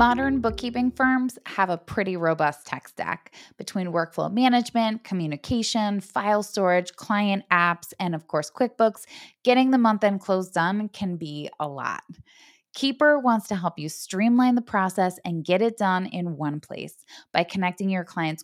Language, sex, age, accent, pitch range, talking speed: English, female, 20-39, American, 170-230 Hz, 165 wpm